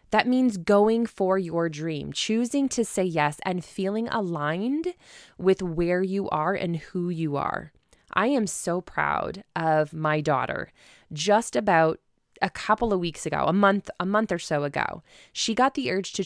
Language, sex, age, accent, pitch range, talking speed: English, female, 20-39, American, 160-200 Hz, 175 wpm